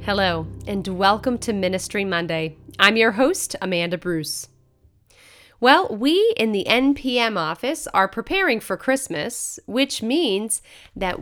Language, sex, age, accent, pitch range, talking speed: English, female, 30-49, American, 180-270 Hz, 130 wpm